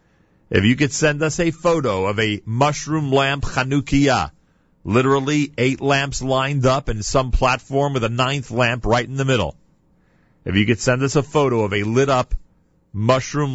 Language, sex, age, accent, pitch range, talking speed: English, male, 40-59, American, 100-125 Hz, 175 wpm